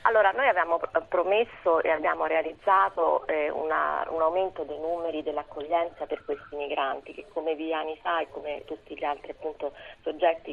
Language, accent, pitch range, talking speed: Italian, native, 145-170 Hz, 160 wpm